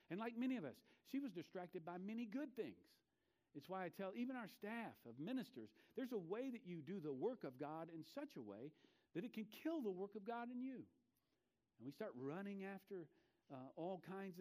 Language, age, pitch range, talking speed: English, 50-69, 135-200 Hz, 220 wpm